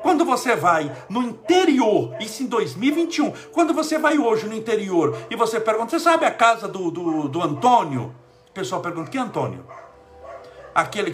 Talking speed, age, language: 180 wpm, 60-79, Portuguese